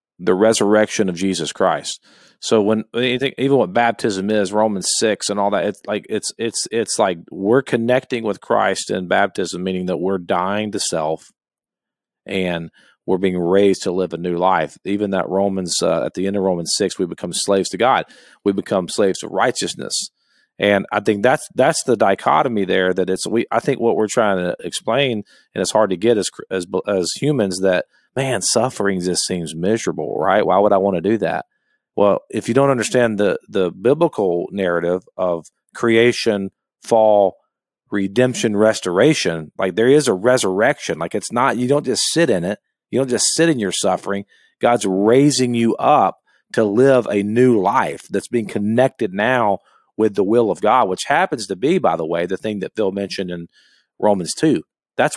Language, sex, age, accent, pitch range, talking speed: English, male, 40-59, American, 95-120 Hz, 190 wpm